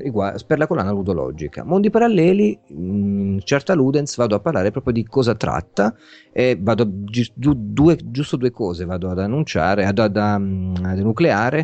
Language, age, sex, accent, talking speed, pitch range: Italian, 30-49, male, native, 155 wpm, 95-135 Hz